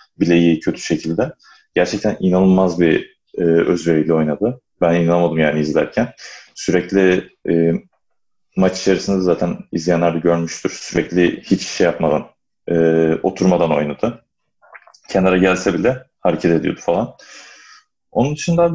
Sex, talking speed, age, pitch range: male, 115 wpm, 30-49, 85-120 Hz